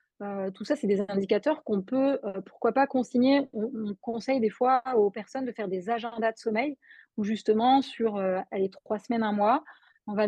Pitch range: 205-245 Hz